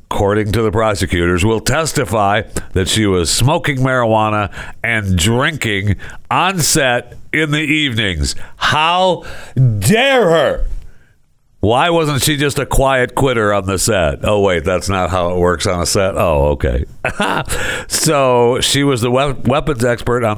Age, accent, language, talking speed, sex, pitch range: 60-79, American, English, 145 wpm, male, 80-115 Hz